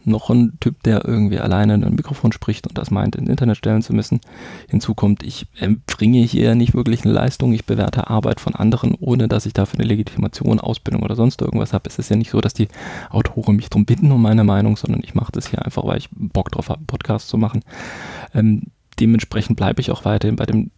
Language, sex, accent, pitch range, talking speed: German, male, German, 110-125 Hz, 230 wpm